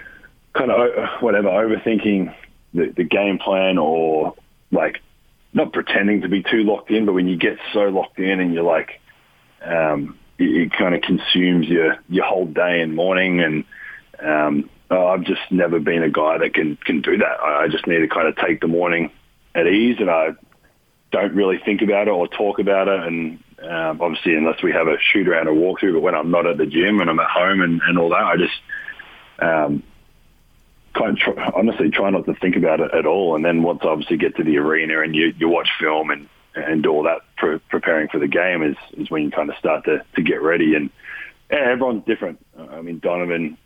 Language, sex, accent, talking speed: English, male, Australian, 210 wpm